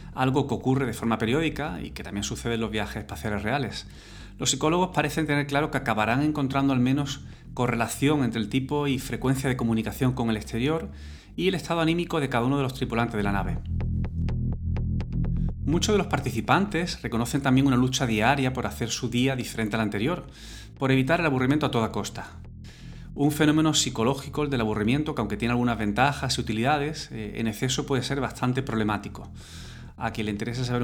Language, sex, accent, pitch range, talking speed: Spanish, male, Spanish, 110-140 Hz, 185 wpm